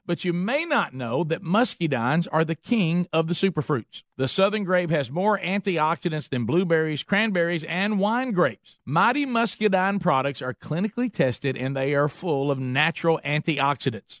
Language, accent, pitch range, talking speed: English, American, 150-200 Hz, 160 wpm